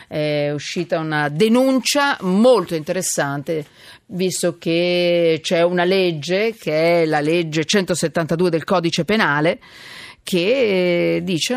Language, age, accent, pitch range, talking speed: Italian, 50-69, native, 165-230 Hz, 110 wpm